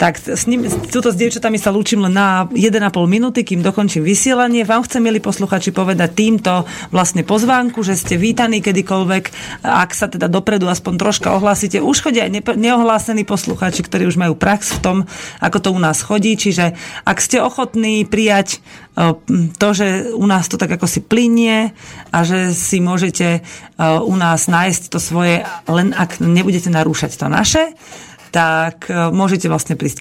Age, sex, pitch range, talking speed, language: 30-49, female, 165-200 Hz, 160 wpm, Slovak